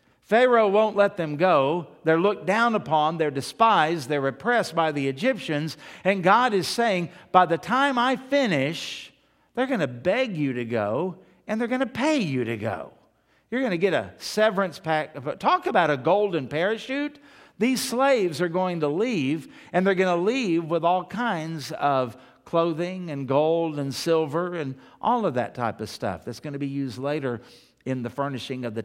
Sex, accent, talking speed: male, American, 185 wpm